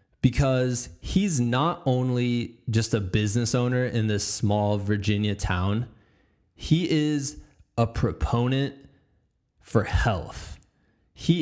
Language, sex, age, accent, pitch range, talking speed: English, male, 20-39, American, 110-150 Hz, 105 wpm